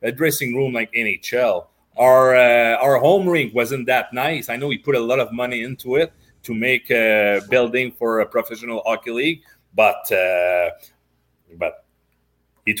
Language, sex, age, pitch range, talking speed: English, male, 30-49, 90-115 Hz, 170 wpm